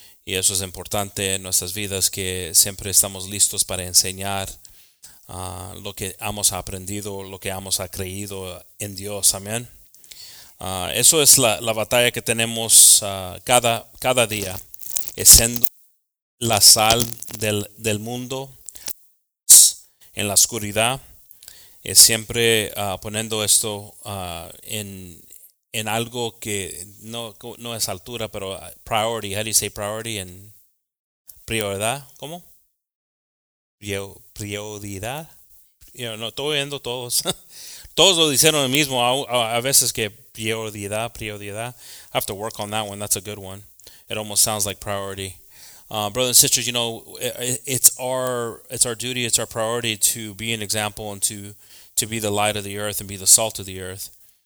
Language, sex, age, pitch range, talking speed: English, male, 30-49, 95-115 Hz, 155 wpm